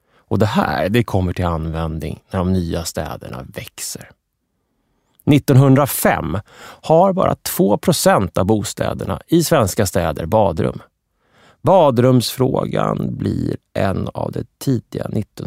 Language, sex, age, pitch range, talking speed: Swedish, male, 30-49, 95-135 Hz, 110 wpm